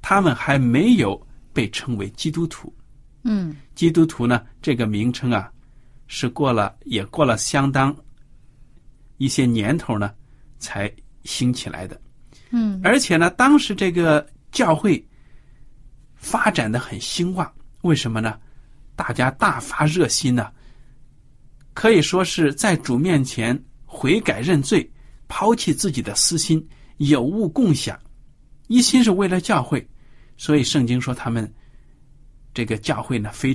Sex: male